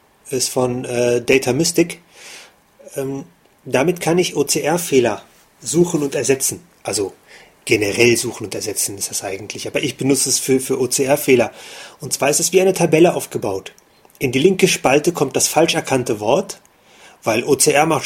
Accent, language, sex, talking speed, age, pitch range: German, German, male, 160 wpm, 30-49, 135-175 Hz